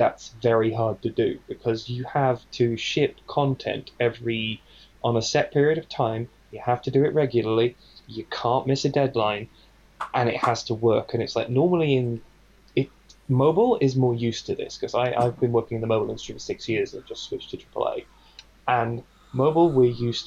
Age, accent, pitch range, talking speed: 10-29, British, 115-140 Hz, 200 wpm